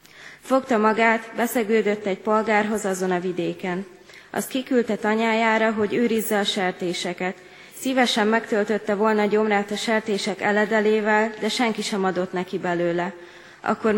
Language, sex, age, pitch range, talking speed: Hungarian, female, 20-39, 185-220 Hz, 125 wpm